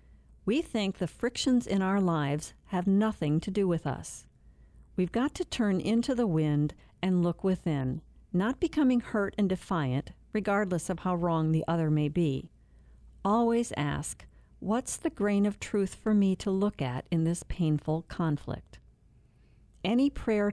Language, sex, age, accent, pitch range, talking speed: English, female, 50-69, American, 150-205 Hz, 160 wpm